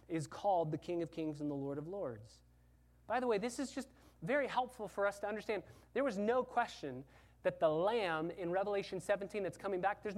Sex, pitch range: male, 140-200 Hz